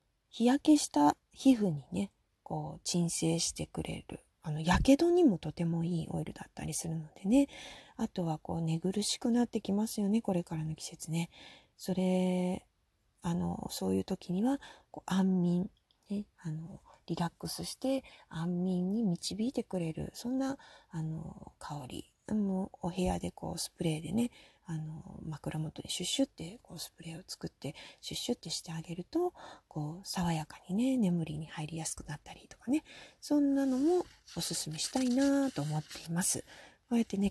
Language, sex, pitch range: Japanese, female, 165-230 Hz